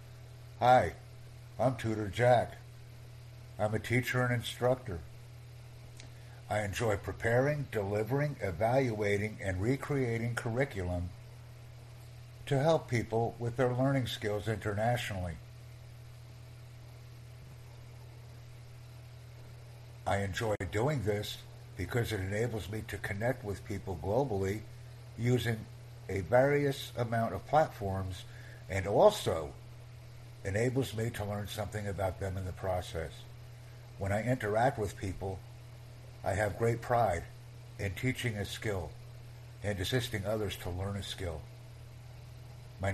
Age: 60-79